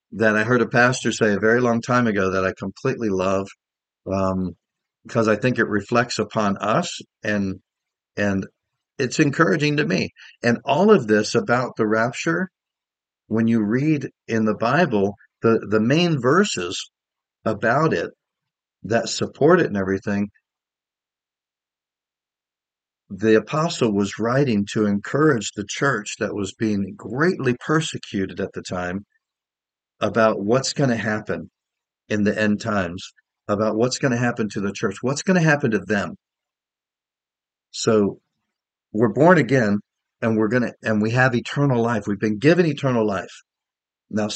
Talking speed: 150 wpm